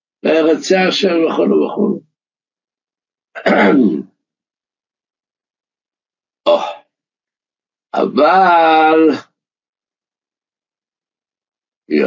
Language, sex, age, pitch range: Hebrew, male, 60-79, 100-130 Hz